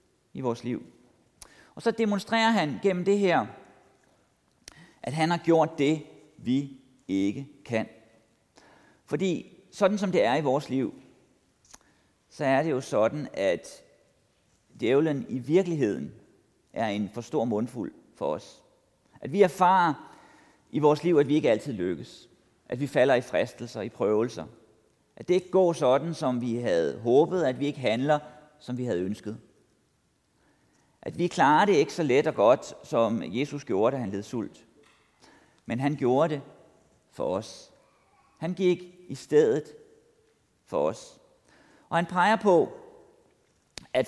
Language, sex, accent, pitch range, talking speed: Danish, male, native, 125-185 Hz, 150 wpm